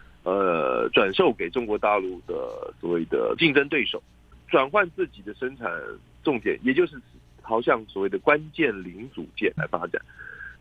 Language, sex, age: Chinese, male, 50-69